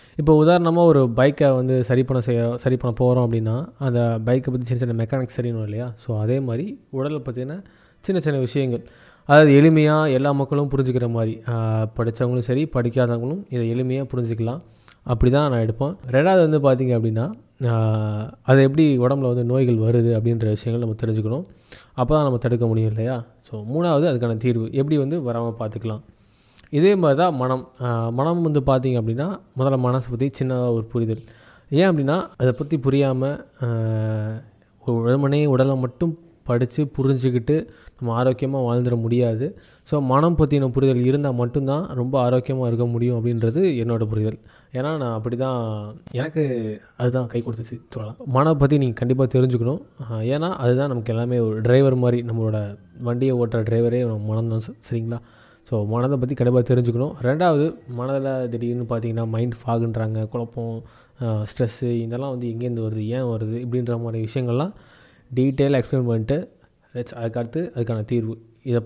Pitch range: 115-135 Hz